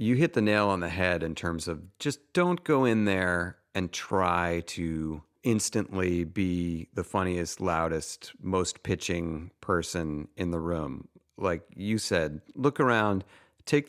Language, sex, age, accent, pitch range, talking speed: English, male, 40-59, American, 85-115 Hz, 150 wpm